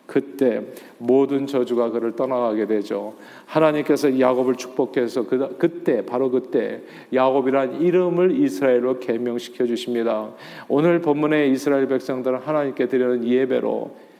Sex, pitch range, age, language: male, 125-175 Hz, 40-59, Korean